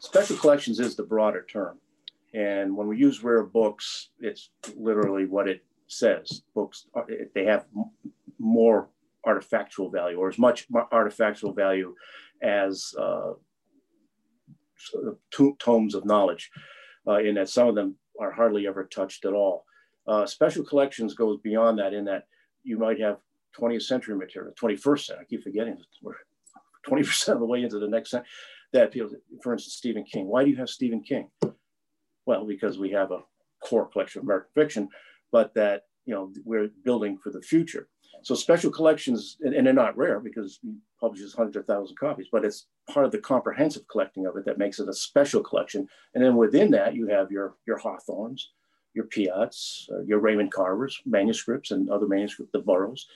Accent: American